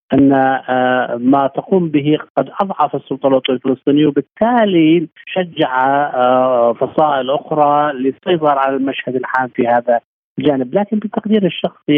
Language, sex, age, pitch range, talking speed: Arabic, male, 50-69, 130-170 Hz, 110 wpm